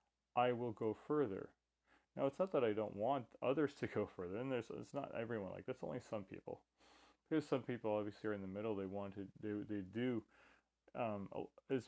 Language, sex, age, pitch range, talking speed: English, male, 30-49, 100-120 Hz, 205 wpm